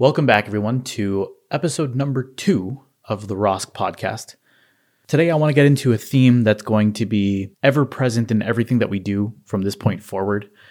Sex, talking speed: male, 185 wpm